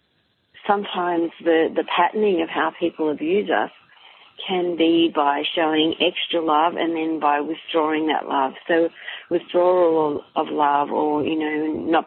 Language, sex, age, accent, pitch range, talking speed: English, female, 40-59, Australian, 150-170 Hz, 145 wpm